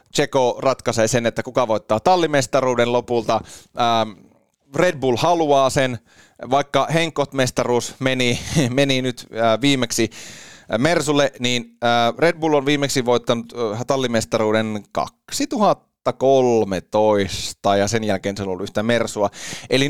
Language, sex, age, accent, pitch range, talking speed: Finnish, male, 30-49, native, 110-140 Hz, 105 wpm